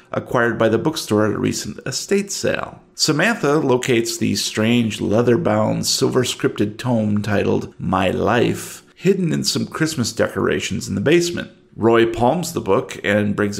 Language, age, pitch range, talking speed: English, 40-59, 110-140 Hz, 145 wpm